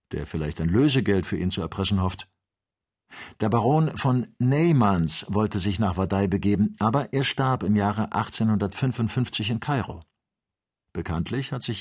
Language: German